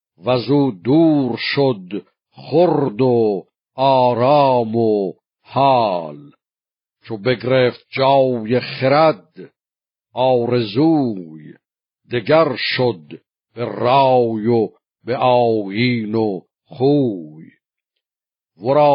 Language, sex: Persian, male